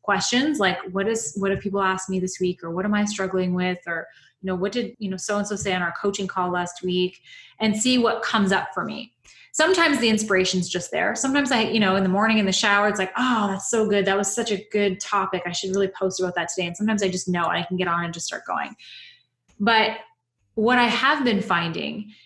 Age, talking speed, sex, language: 20-39, 255 wpm, female, English